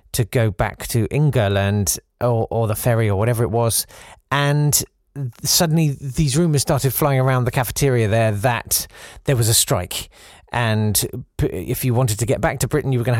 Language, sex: English, male